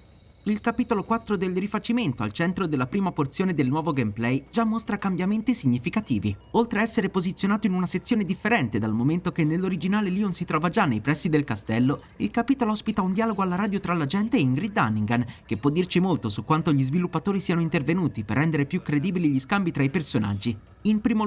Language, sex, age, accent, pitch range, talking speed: Italian, male, 30-49, native, 140-205 Hz, 200 wpm